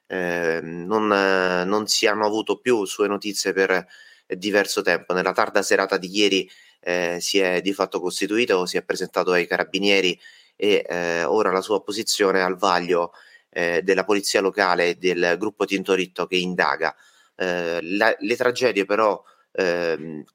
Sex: male